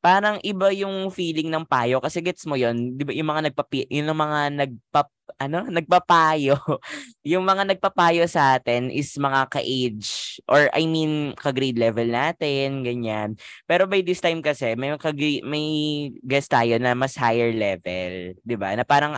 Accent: Filipino